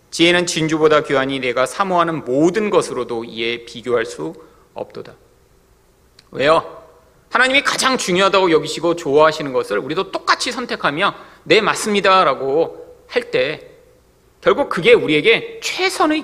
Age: 40-59